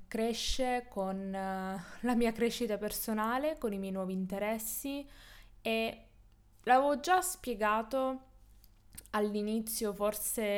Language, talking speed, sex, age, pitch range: Italian, 95 wpm, female, 20-39, 195-235 Hz